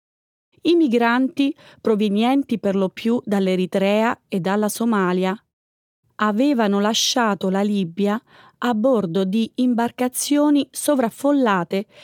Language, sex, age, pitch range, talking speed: Italian, female, 30-49, 205-280 Hz, 95 wpm